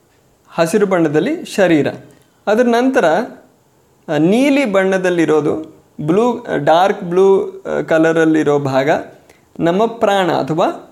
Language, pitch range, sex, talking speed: Kannada, 150-205 Hz, male, 80 wpm